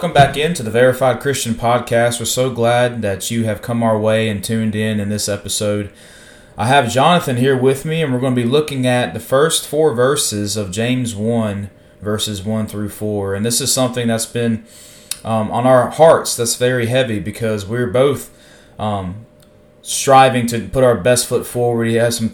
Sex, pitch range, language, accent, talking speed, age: male, 105-130 Hz, English, American, 195 wpm, 20-39